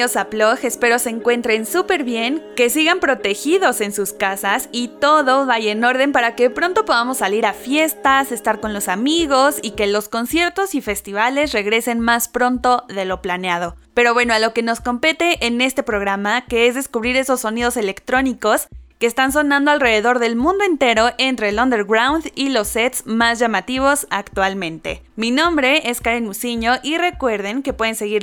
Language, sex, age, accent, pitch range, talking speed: Spanish, female, 20-39, Mexican, 215-275 Hz, 170 wpm